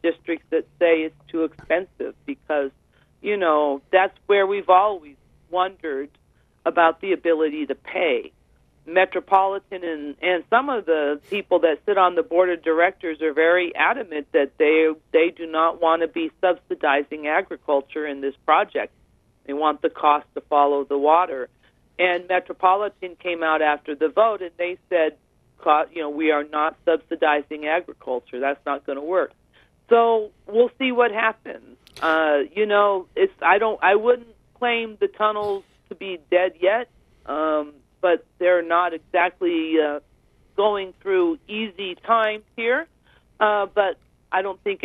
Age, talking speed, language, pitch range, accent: 50-69, 155 wpm, English, 150-190 Hz, American